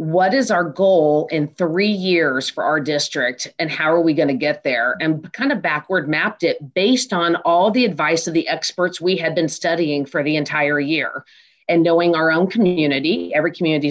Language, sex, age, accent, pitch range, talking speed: English, female, 40-59, American, 160-190 Hz, 205 wpm